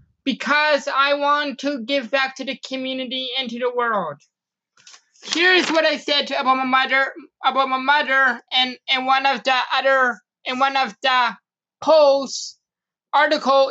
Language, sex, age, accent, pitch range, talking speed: English, male, 20-39, American, 265-305 Hz, 155 wpm